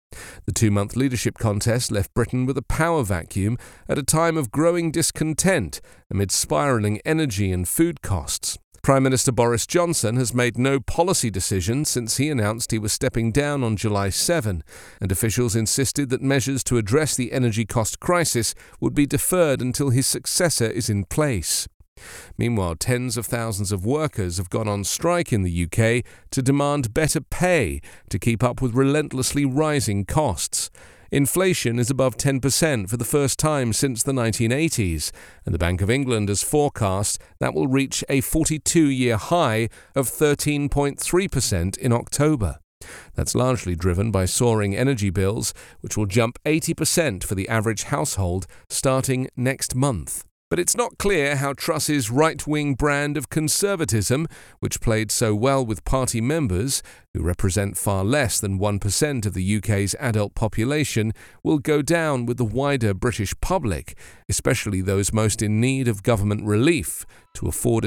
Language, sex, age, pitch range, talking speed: English, male, 40-59, 105-145 Hz, 155 wpm